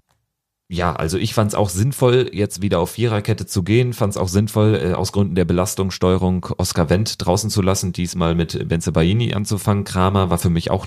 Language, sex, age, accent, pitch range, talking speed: German, male, 40-59, German, 80-100 Hz, 195 wpm